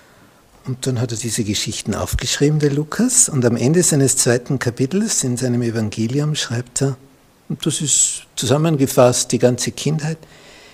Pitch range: 115-155 Hz